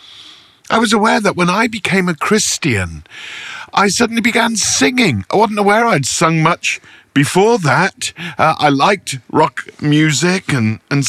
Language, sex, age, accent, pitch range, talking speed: English, male, 50-69, British, 135-195 Hz, 150 wpm